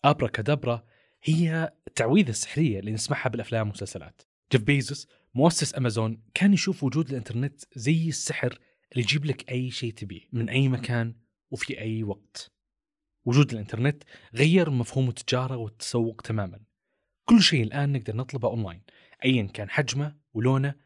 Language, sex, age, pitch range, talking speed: Arabic, male, 30-49, 115-150 Hz, 135 wpm